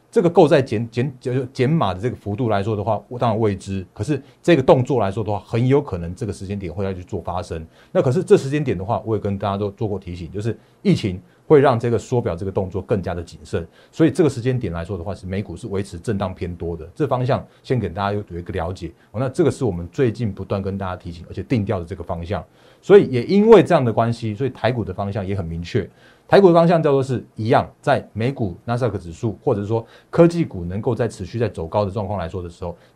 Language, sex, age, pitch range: Chinese, male, 30-49, 100-135 Hz